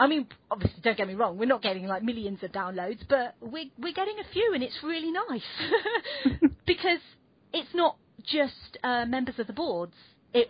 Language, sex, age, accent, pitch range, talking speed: English, female, 30-49, British, 195-245 Hz, 195 wpm